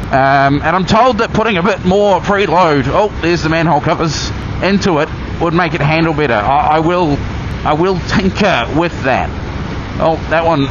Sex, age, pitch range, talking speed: male, 30-49, 135-195 Hz, 185 wpm